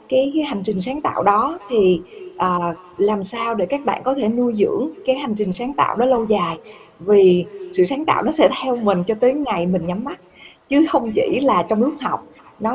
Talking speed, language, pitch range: 225 wpm, Vietnamese, 190-260 Hz